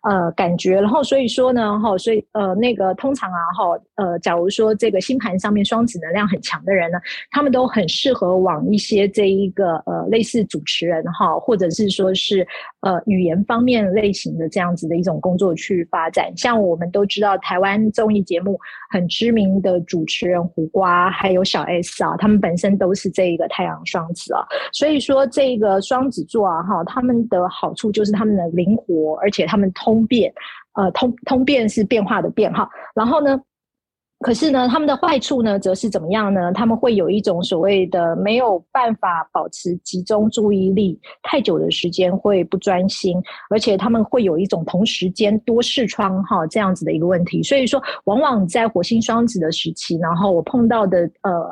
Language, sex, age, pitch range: Chinese, female, 30-49, 185-225 Hz